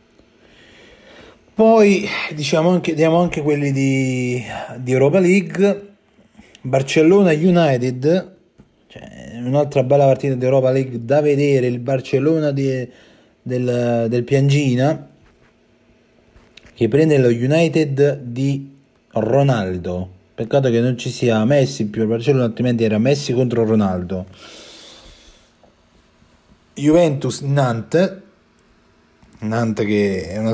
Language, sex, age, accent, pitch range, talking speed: Italian, male, 30-49, native, 110-140 Hz, 100 wpm